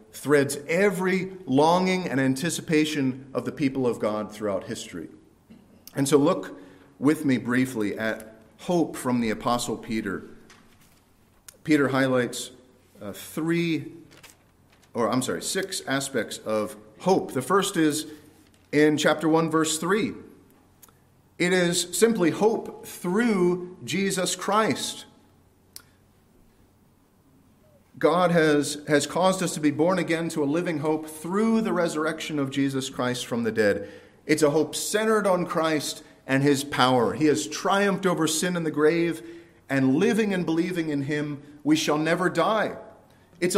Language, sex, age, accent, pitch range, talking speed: English, male, 40-59, American, 140-185 Hz, 140 wpm